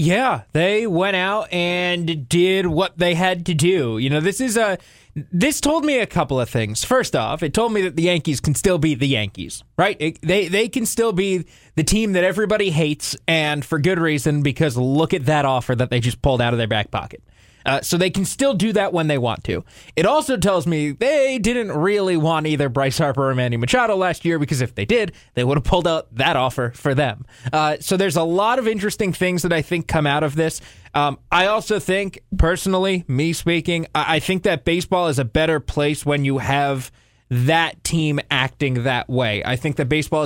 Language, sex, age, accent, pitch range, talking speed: English, male, 20-39, American, 135-180 Hz, 220 wpm